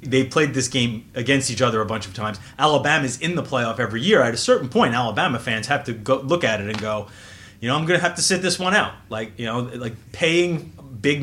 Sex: male